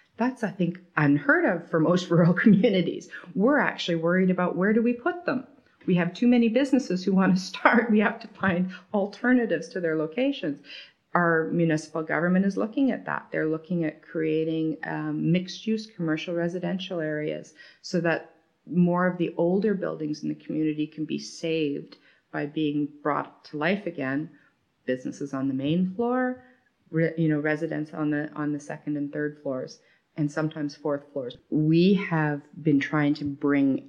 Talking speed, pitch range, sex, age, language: 165 wpm, 145-185 Hz, female, 40-59, English